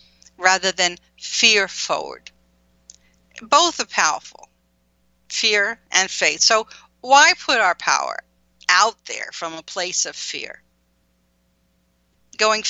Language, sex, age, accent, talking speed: English, female, 50-69, American, 110 wpm